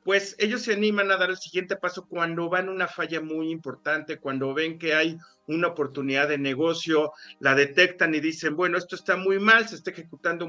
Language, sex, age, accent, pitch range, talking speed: Spanish, male, 40-59, Mexican, 150-200 Hz, 205 wpm